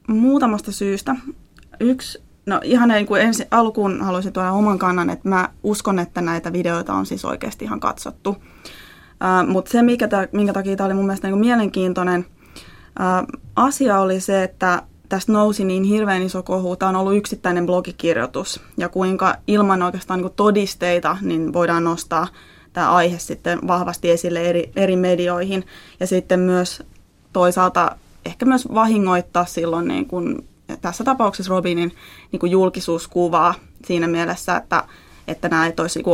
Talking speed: 160 wpm